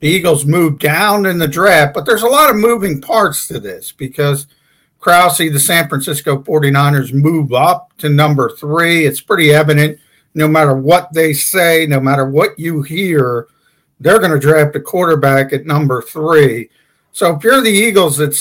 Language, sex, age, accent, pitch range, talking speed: English, male, 50-69, American, 145-175 Hz, 180 wpm